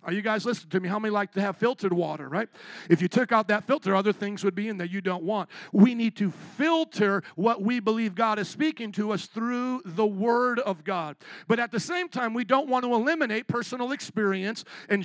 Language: English